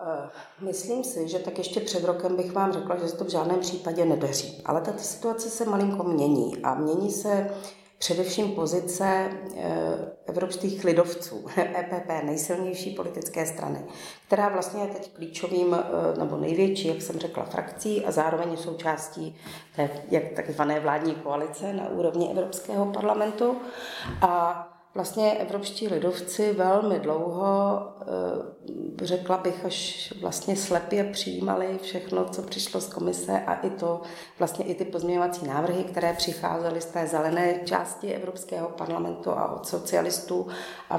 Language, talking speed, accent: Czech, 135 wpm, native